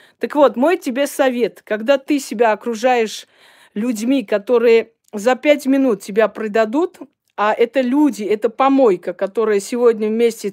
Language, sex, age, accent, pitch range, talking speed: Russian, female, 40-59, native, 220-290 Hz, 135 wpm